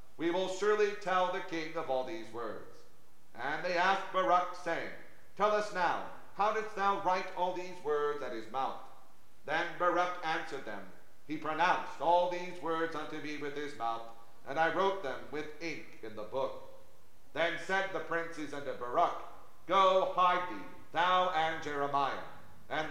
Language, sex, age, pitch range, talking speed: English, male, 50-69, 140-180 Hz, 170 wpm